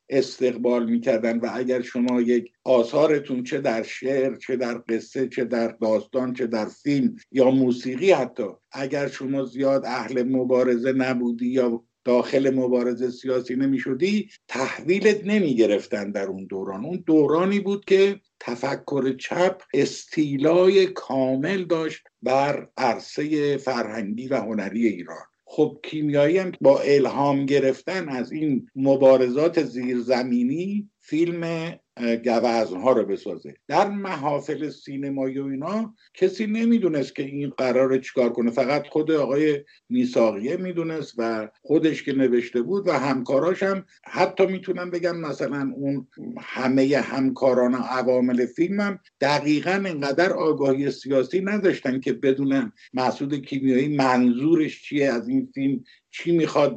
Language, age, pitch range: Persian, 50-69, 125-170 Hz